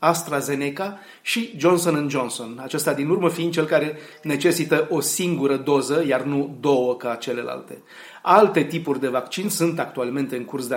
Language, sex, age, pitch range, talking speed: Romanian, male, 30-49, 135-175 Hz, 155 wpm